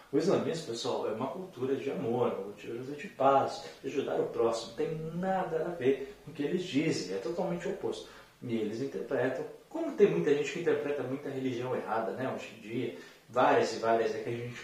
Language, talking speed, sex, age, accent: Portuguese, 215 wpm, male, 30-49, Brazilian